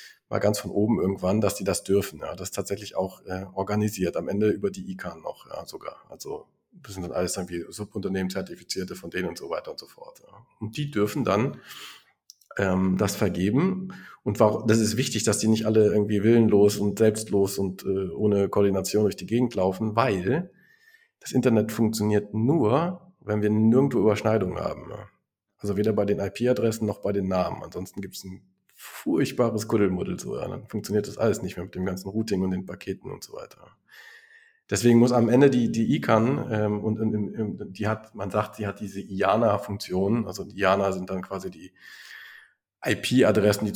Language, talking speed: German, 195 wpm